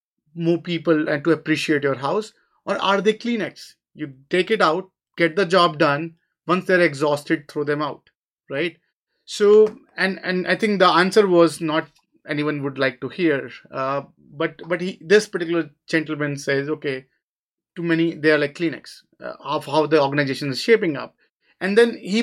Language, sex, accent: English, male, Indian